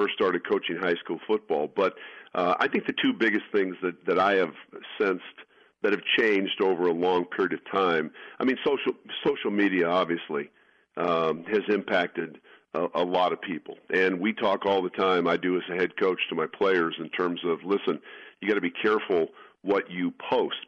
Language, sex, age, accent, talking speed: English, male, 50-69, American, 195 wpm